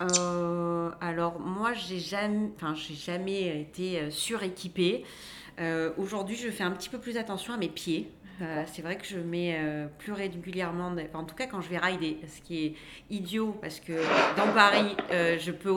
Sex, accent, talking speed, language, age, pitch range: female, French, 195 wpm, French, 40-59, 160-190 Hz